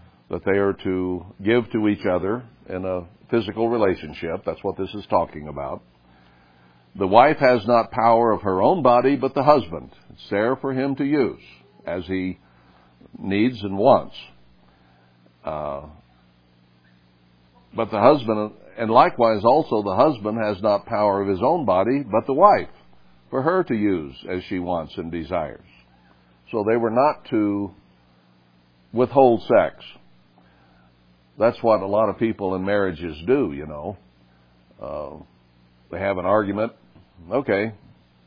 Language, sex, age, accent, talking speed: English, male, 60-79, American, 145 wpm